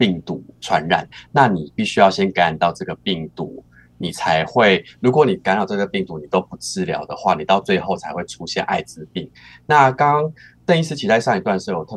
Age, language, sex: 30-49, Chinese, male